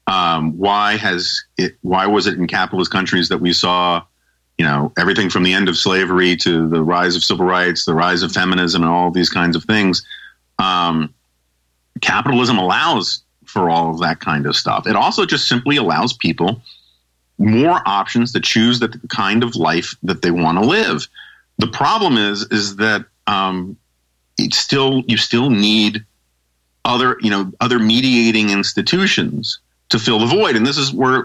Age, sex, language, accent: 40-59, male, English, American